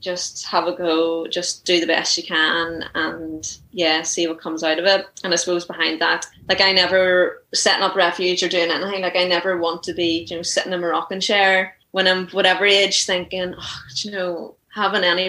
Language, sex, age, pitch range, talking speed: English, female, 20-39, 170-190 Hz, 215 wpm